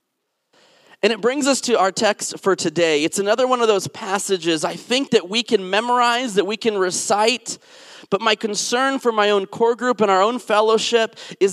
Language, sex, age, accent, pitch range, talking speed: English, male, 30-49, American, 175-225 Hz, 200 wpm